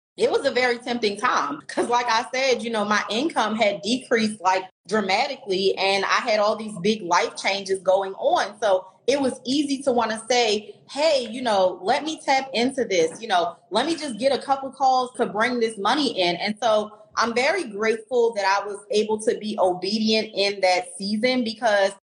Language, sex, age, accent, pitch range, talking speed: English, female, 30-49, American, 200-255 Hz, 200 wpm